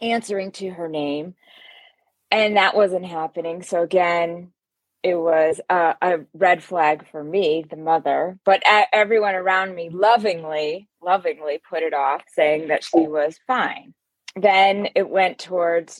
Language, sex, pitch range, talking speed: English, female, 160-195 Hz, 145 wpm